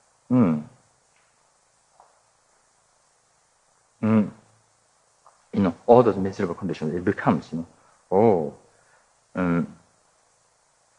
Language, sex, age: English, male, 60-79